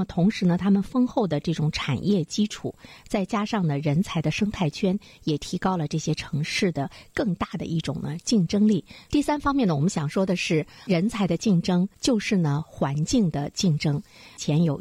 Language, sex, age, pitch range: Chinese, female, 50-69, 150-200 Hz